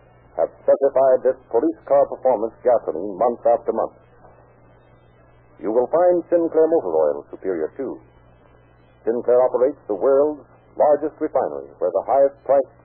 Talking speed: 125 wpm